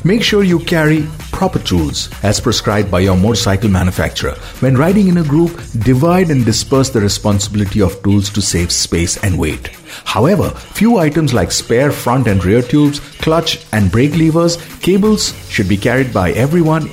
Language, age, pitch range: English, 50-69, 105-145 Hz